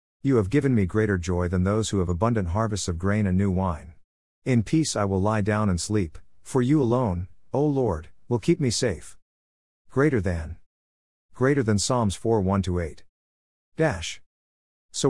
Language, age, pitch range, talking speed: English, 50-69, 90-115 Hz, 170 wpm